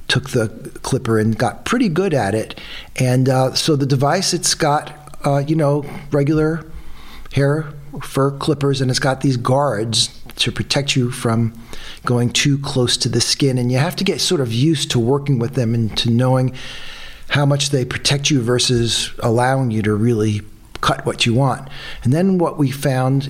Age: 50-69